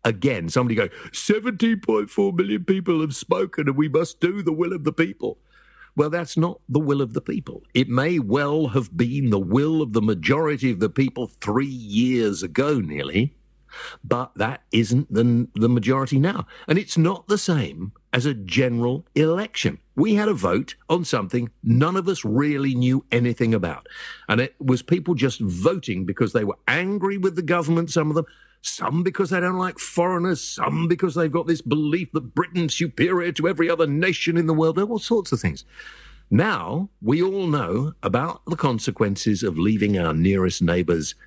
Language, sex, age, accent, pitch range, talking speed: English, male, 50-69, British, 120-170 Hz, 185 wpm